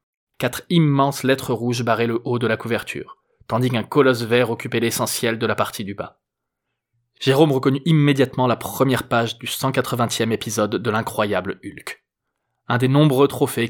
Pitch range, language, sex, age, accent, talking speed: 115-135 Hz, French, male, 20-39, French, 160 wpm